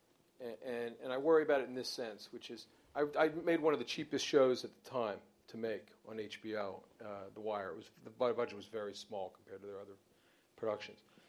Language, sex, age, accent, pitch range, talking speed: English, male, 50-69, American, 110-145 Hz, 220 wpm